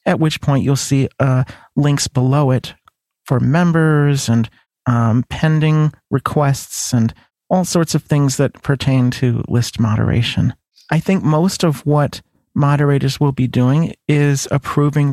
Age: 40-59